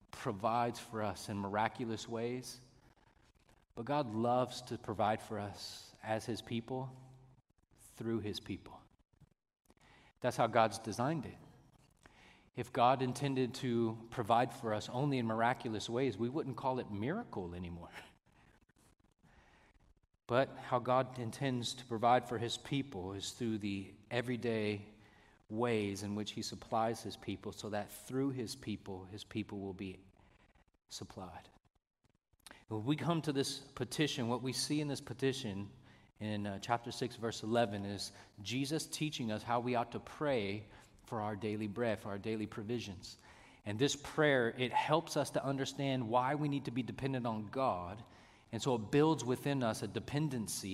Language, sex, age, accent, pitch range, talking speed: English, male, 40-59, American, 105-130 Hz, 155 wpm